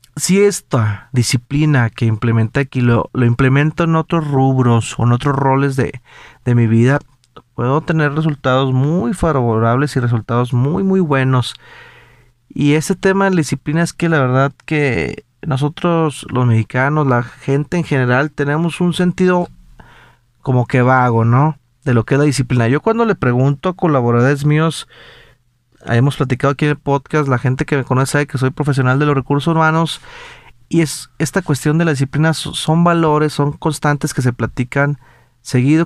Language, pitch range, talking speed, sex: Spanish, 120-150 Hz, 170 wpm, male